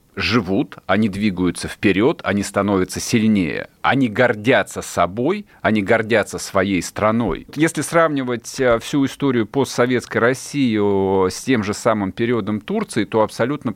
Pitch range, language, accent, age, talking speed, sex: 95-125 Hz, Russian, native, 40-59, 120 wpm, male